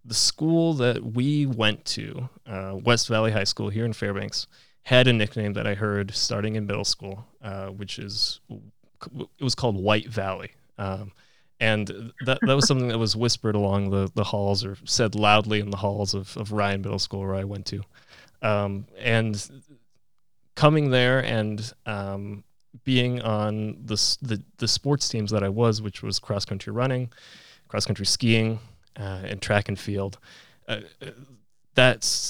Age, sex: 20-39, male